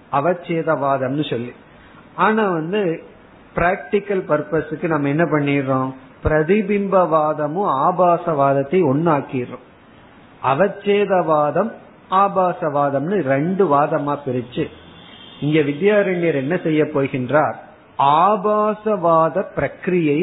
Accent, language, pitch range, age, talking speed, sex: native, Tamil, 135-175 Hz, 50-69, 55 wpm, male